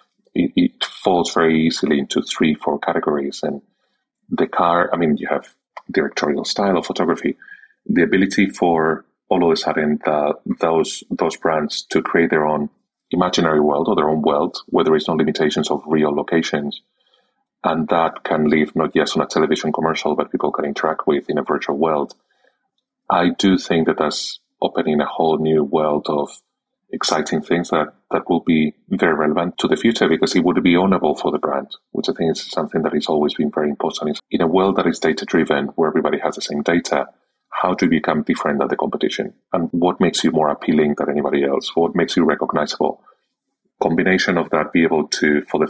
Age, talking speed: 30-49, 200 wpm